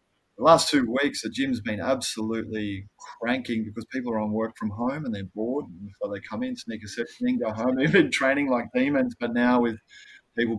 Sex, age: male, 20-39